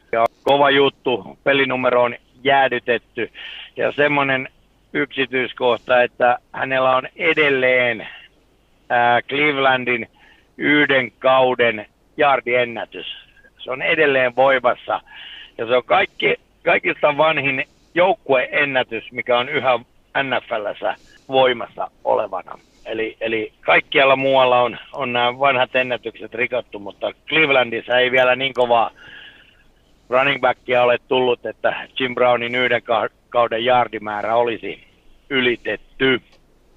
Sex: male